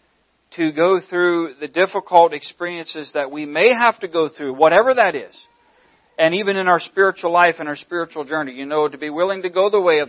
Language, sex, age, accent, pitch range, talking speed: English, male, 40-59, American, 135-175 Hz, 215 wpm